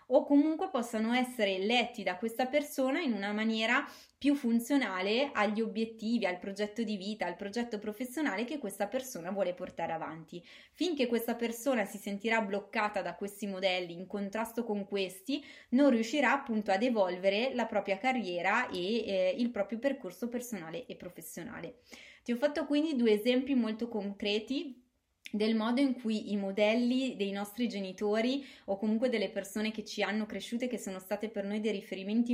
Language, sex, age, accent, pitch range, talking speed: Italian, female, 20-39, native, 205-255 Hz, 165 wpm